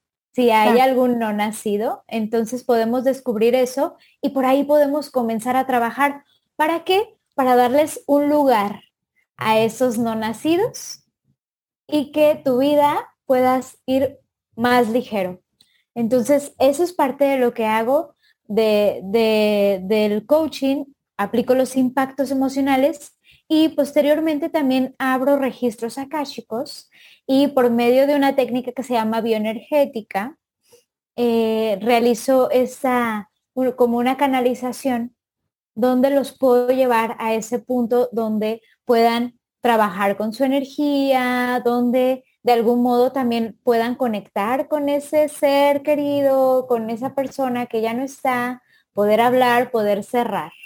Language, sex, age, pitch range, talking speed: Spanish, female, 20-39, 230-275 Hz, 125 wpm